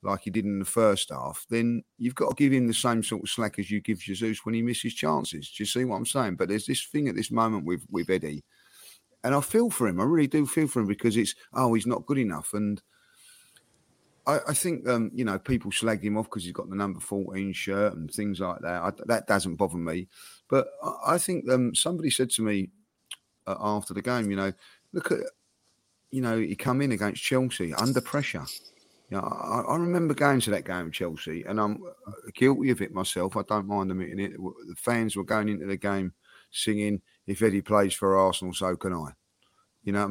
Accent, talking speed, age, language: British, 230 wpm, 40-59, English